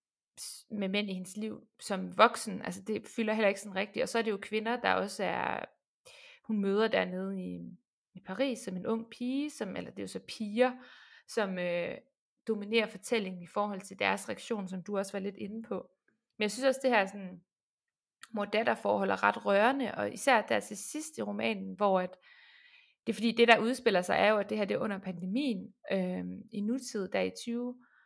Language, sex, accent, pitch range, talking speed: Danish, female, native, 195-245 Hz, 215 wpm